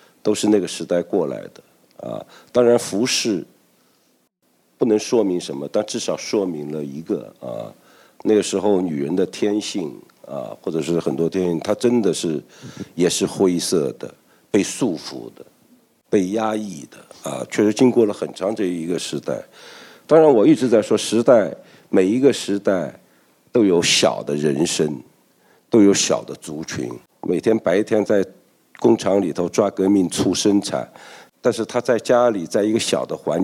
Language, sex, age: Chinese, male, 50-69